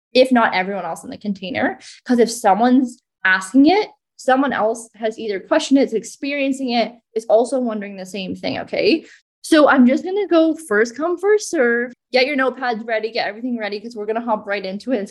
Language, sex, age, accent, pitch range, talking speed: English, female, 20-39, American, 205-255 Hz, 215 wpm